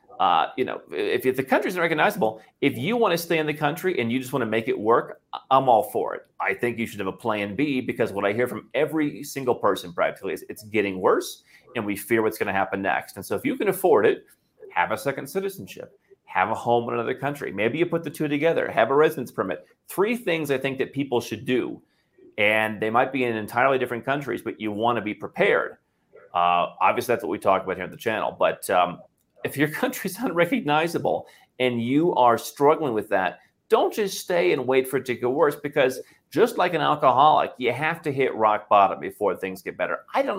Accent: American